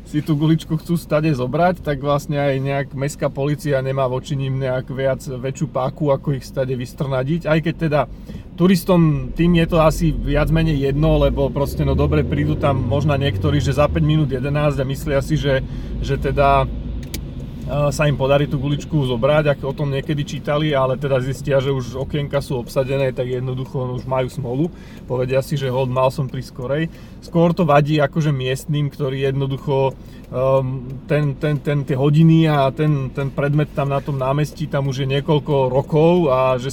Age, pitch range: 30-49, 135-155 Hz